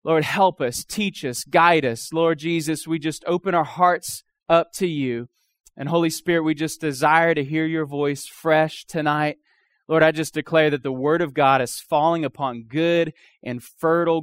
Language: English